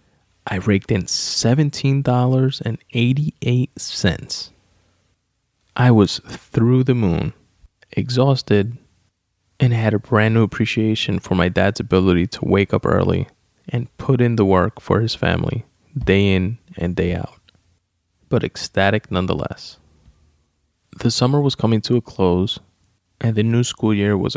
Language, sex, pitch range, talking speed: English, male, 95-120 Hz, 130 wpm